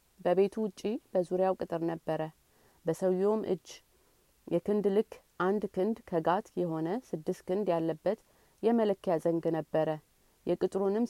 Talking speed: 105 wpm